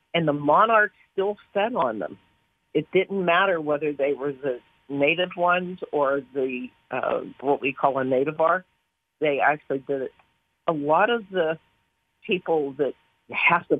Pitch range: 140-185 Hz